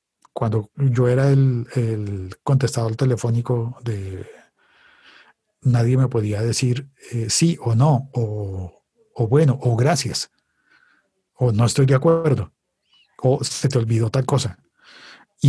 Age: 40-59